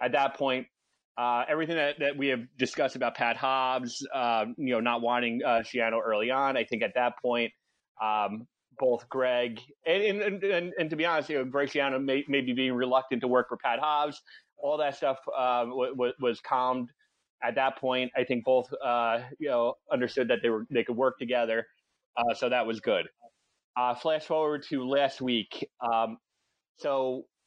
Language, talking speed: English, 190 wpm